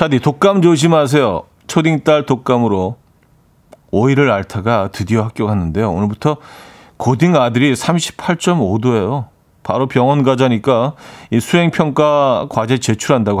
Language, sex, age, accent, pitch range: Korean, male, 40-59, native, 105-135 Hz